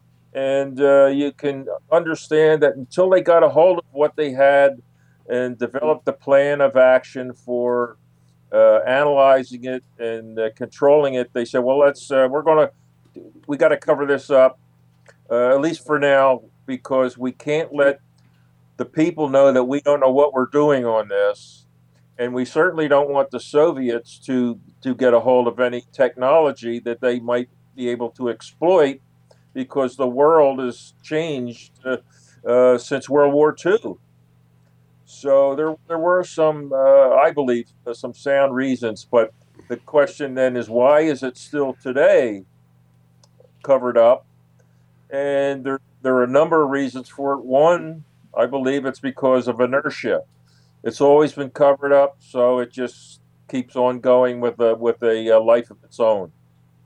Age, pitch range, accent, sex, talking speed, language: 50-69, 115-140 Hz, American, male, 165 wpm, English